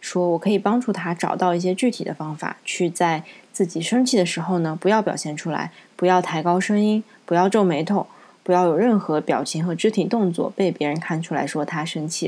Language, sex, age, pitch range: Chinese, female, 20-39, 165-205 Hz